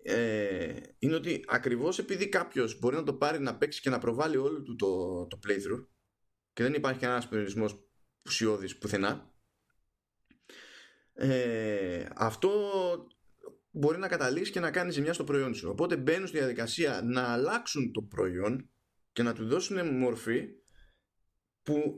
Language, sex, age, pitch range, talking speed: Greek, male, 20-39, 115-185 Hz, 145 wpm